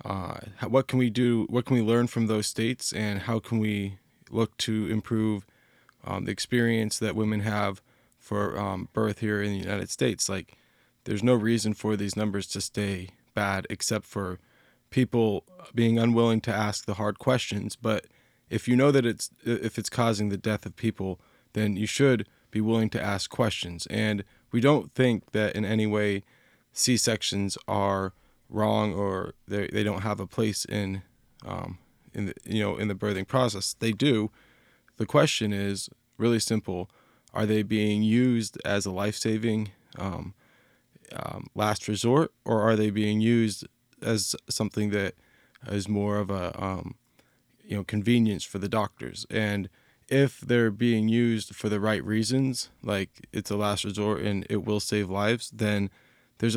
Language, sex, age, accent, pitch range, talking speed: English, male, 20-39, American, 100-115 Hz, 170 wpm